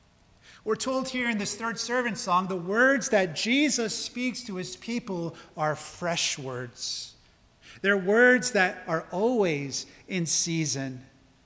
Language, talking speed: English, 135 wpm